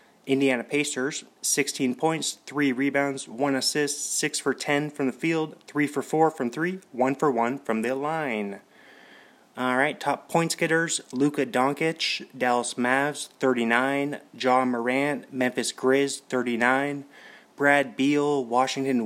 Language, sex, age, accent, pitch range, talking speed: English, male, 30-49, American, 130-155 Hz, 135 wpm